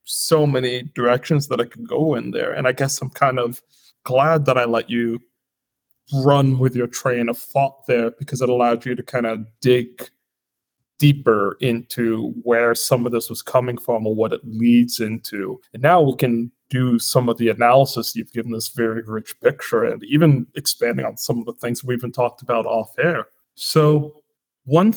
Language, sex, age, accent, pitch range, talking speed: English, male, 30-49, American, 115-135 Hz, 195 wpm